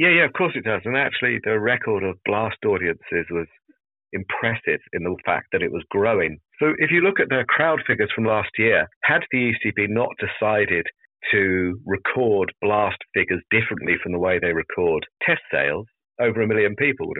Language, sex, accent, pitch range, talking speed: English, male, British, 100-140 Hz, 190 wpm